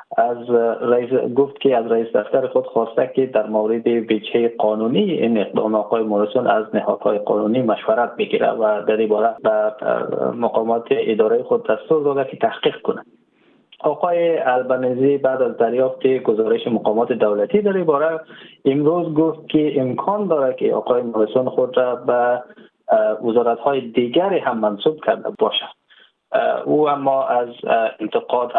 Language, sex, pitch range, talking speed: Persian, male, 115-160 Hz, 140 wpm